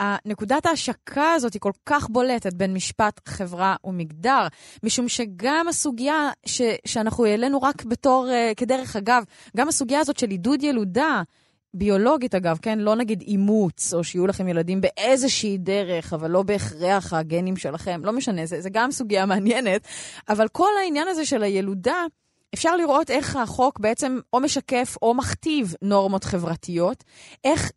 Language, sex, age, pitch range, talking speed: Hebrew, female, 20-39, 180-255 Hz, 150 wpm